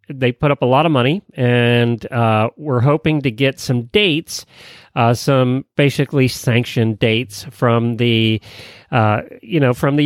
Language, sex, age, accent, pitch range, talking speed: English, male, 40-59, American, 120-160 Hz, 160 wpm